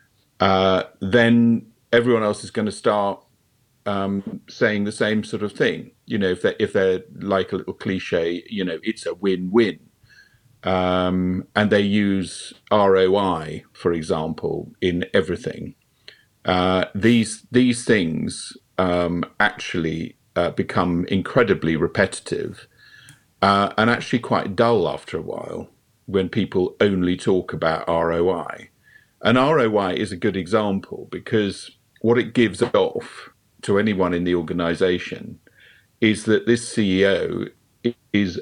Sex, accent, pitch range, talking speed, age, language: male, British, 90-110 Hz, 130 wpm, 50-69, English